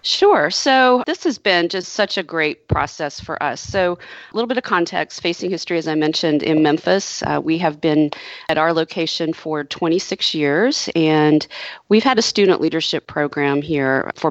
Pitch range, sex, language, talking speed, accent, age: 145-175 Hz, female, English, 185 wpm, American, 40-59